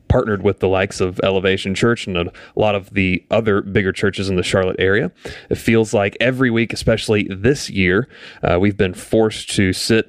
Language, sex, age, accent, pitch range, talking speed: English, male, 30-49, American, 100-120 Hz, 195 wpm